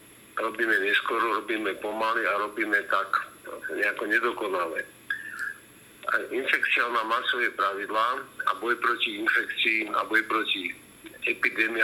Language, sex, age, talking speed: Slovak, male, 50-69, 105 wpm